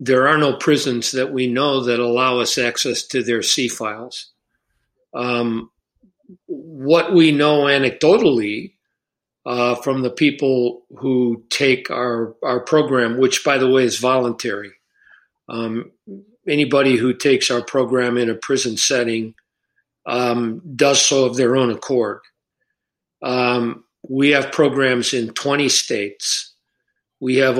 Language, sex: English, male